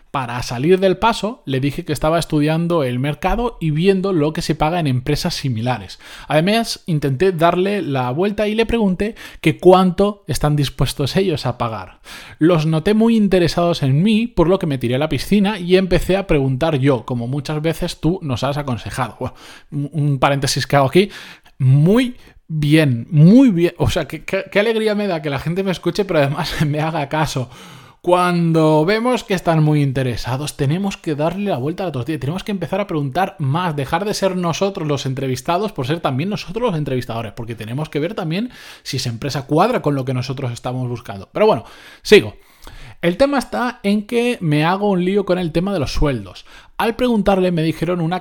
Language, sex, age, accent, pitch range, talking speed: Spanish, male, 20-39, Spanish, 140-190 Hz, 195 wpm